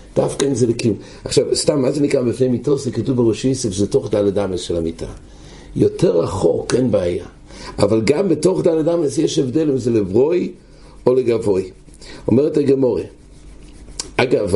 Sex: male